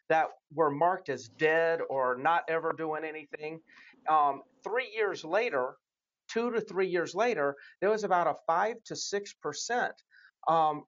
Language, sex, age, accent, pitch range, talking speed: English, male, 40-59, American, 155-210 Hz, 150 wpm